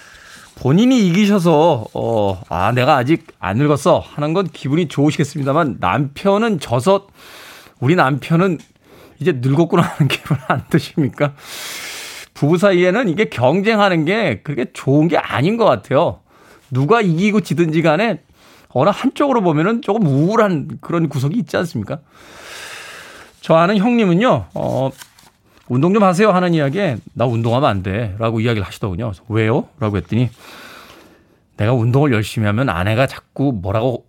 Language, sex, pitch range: Korean, male, 120-170 Hz